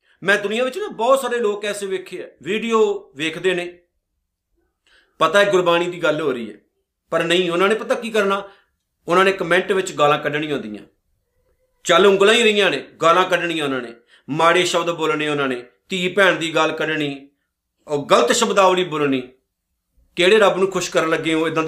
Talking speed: 185 wpm